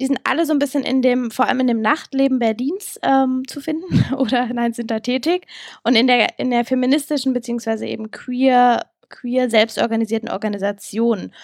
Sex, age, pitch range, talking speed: female, 10-29, 230-275 Hz, 180 wpm